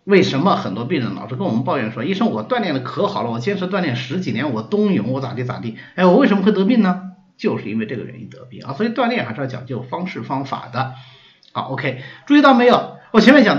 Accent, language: native, Chinese